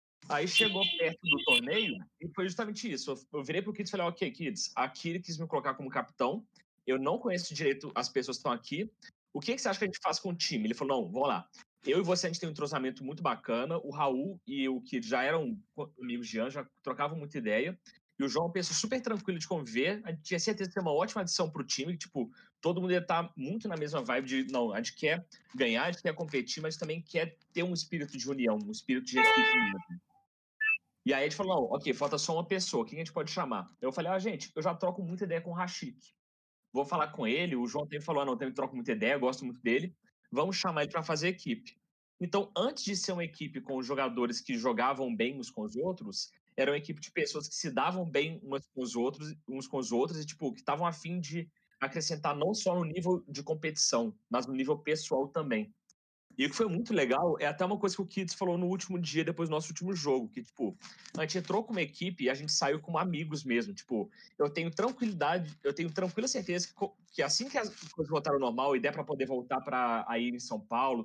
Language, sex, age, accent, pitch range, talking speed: Portuguese, male, 30-49, Brazilian, 140-195 Hz, 245 wpm